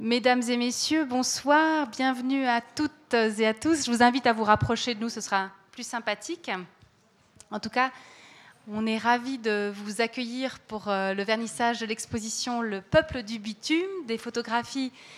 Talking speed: 175 wpm